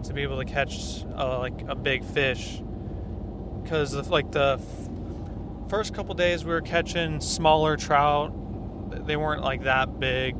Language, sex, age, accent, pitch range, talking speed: English, male, 20-39, American, 100-150 Hz, 155 wpm